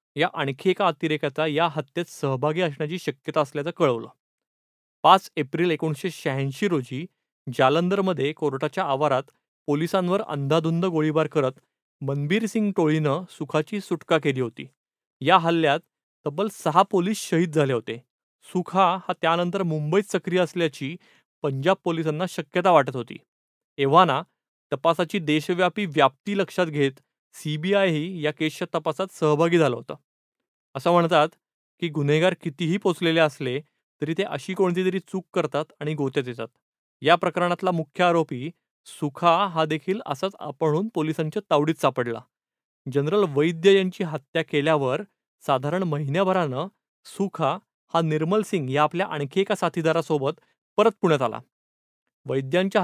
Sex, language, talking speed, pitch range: male, Marathi, 125 wpm, 150-185 Hz